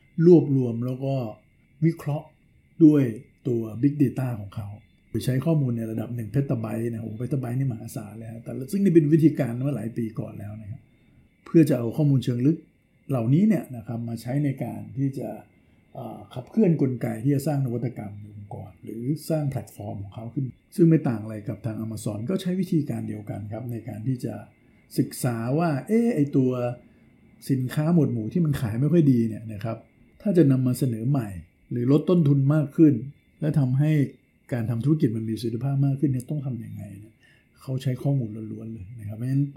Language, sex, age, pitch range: Thai, male, 60-79, 115-145 Hz